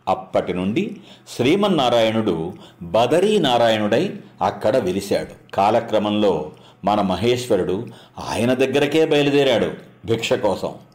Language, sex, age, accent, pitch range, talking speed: English, male, 50-69, Indian, 110-150 Hz, 95 wpm